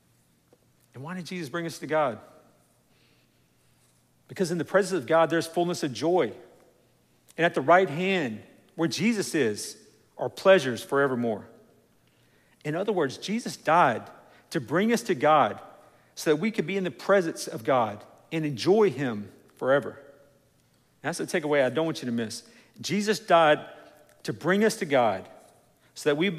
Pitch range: 125-175 Hz